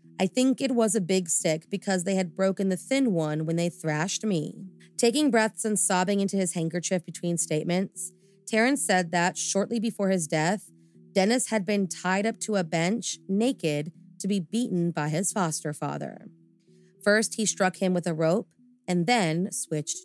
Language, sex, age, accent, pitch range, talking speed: English, female, 30-49, American, 170-215 Hz, 180 wpm